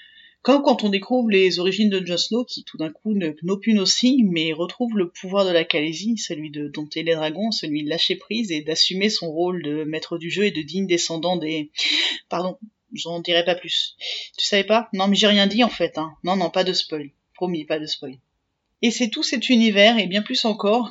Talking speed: 225 wpm